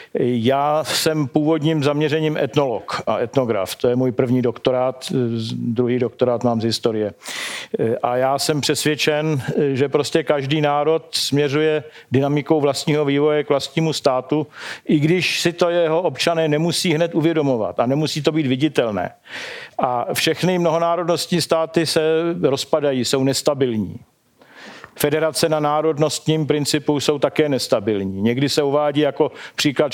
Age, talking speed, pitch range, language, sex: 50-69, 130 wpm, 135-160 Hz, Slovak, male